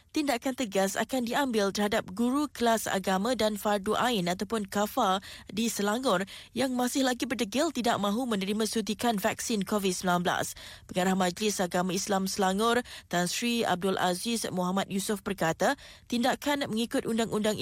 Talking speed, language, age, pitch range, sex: 135 wpm, Malay, 20-39, 195-240 Hz, female